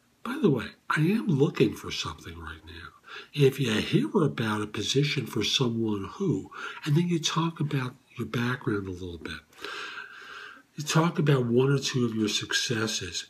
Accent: American